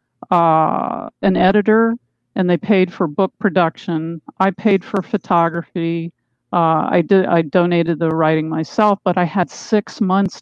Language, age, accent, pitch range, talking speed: English, 50-69, American, 180-225 Hz, 150 wpm